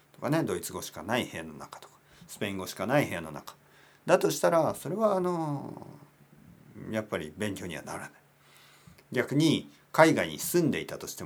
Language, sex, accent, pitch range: Japanese, male, native, 95-145 Hz